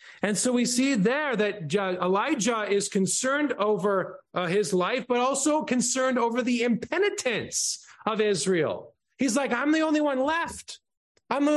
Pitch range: 180-245 Hz